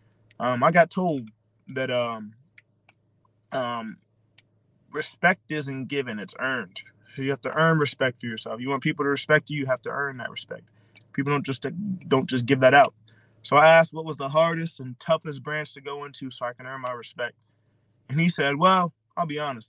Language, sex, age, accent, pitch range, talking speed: English, male, 20-39, American, 115-155 Hz, 200 wpm